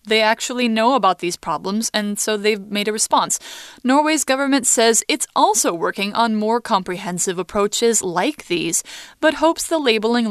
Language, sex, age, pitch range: Chinese, female, 20-39, 185-235 Hz